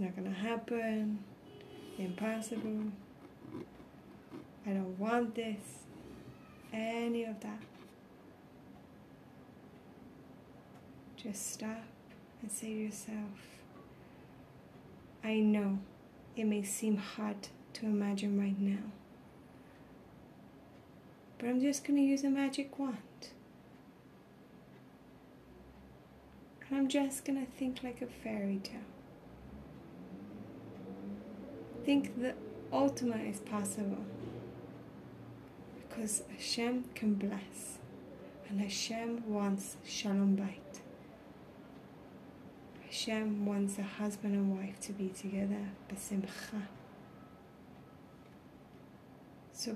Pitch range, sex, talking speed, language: 195-230 Hz, female, 85 wpm, English